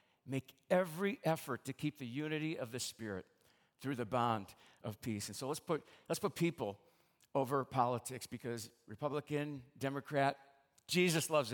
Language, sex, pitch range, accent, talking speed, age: English, male, 130-165 Hz, American, 150 wpm, 50-69